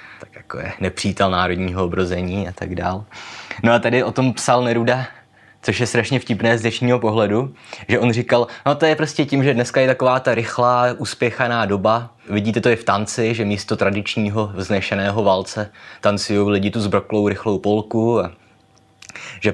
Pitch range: 100-110 Hz